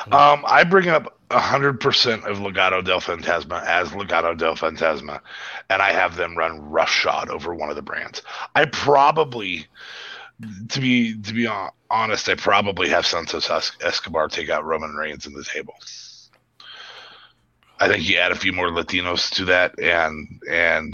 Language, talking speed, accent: English, 165 wpm, American